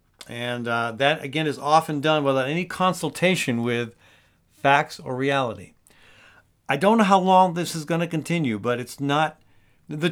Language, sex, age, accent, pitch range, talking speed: English, male, 50-69, American, 125-175 Hz, 165 wpm